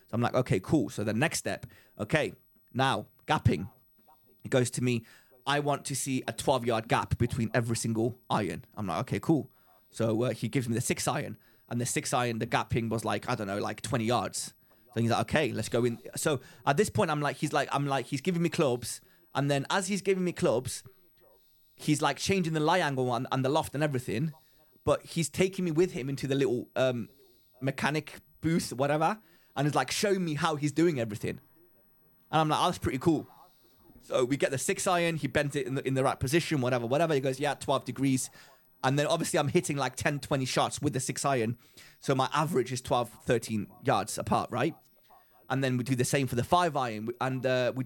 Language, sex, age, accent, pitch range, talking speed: English, male, 20-39, British, 125-155 Hz, 225 wpm